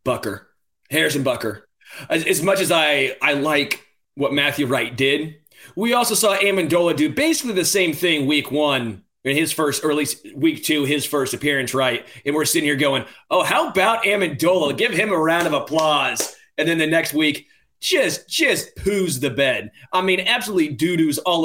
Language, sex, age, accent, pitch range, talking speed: English, male, 30-49, American, 135-165 Hz, 185 wpm